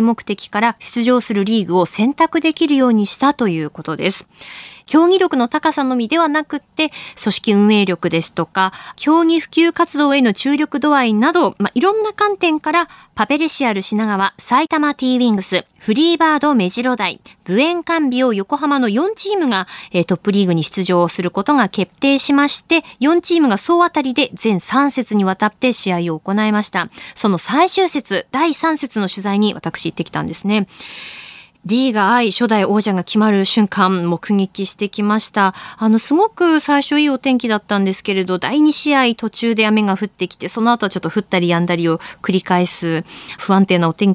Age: 20-39